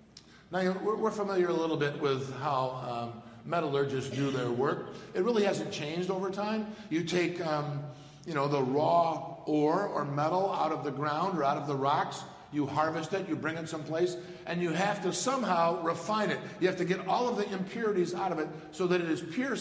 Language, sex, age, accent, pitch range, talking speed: English, male, 50-69, American, 155-190 Hz, 210 wpm